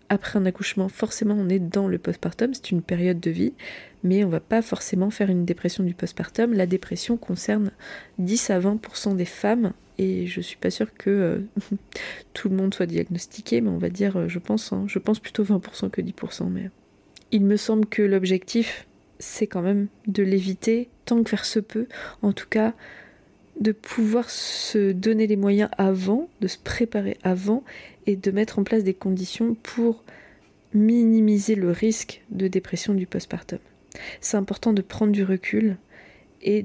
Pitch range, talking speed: 190-215 Hz, 180 wpm